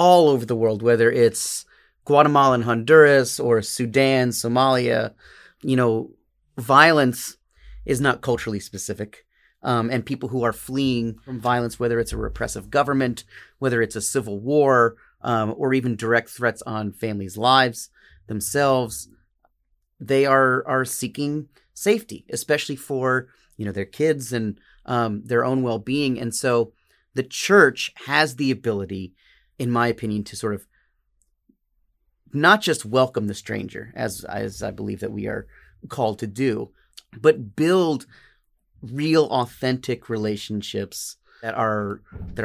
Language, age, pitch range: English, 30-49, 110-135 Hz